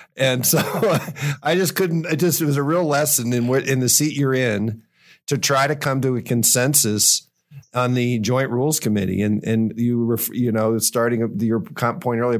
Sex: male